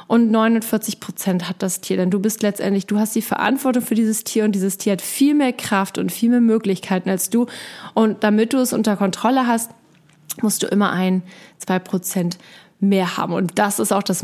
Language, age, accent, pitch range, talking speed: German, 30-49, German, 195-245 Hz, 210 wpm